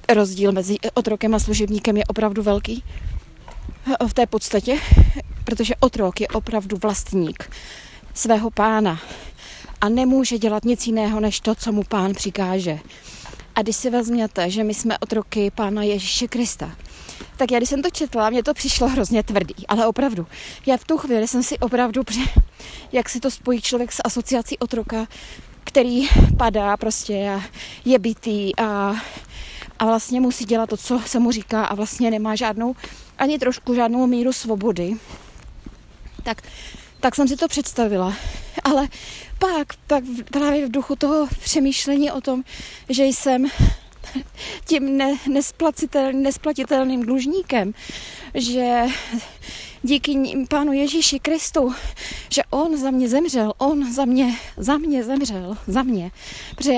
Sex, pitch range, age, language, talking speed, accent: female, 215-270 Hz, 20-39, Czech, 140 wpm, native